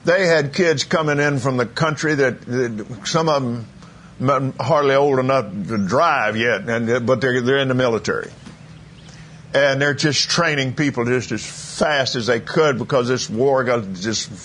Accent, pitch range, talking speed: American, 120-150 Hz, 170 wpm